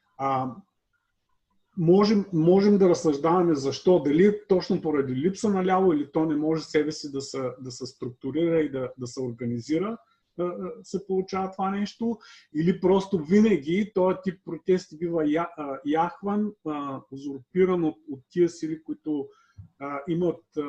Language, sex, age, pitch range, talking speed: Bulgarian, male, 40-59, 135-180 Hz, 145 wpm